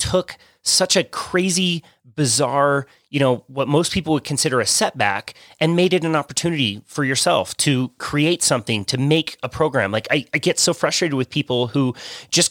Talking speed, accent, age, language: 180 wpm, American, 30-49, English